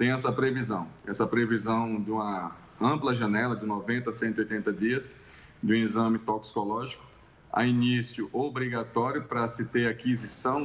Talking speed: 140 wpm